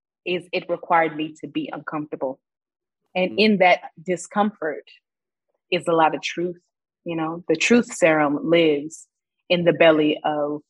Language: English